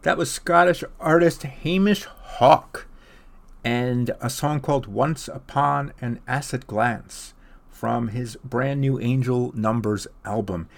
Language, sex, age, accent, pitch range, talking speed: English, male, 50-69, American, 115-140 Hz, 120 wpm